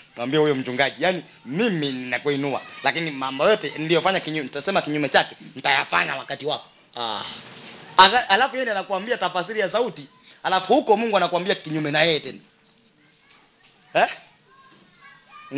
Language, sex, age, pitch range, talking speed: English, male, 30-49, 155-215 Hz, 135 wpm